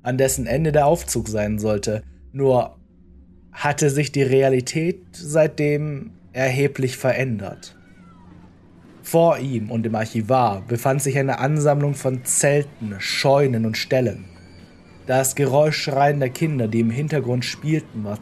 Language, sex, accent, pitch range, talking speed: German, male, German, 110-140 Hz, 130 wpm